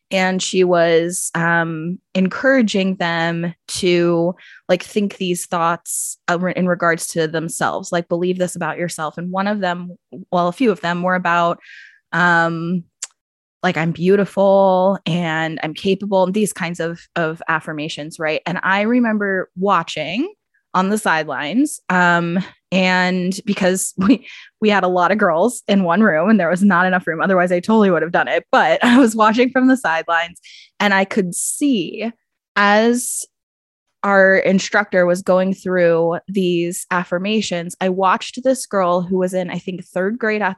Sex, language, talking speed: female, English, 160 wpm